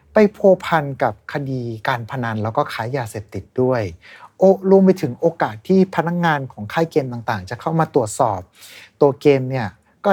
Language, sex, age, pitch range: Thai, male, 60-79, 115-165 Hz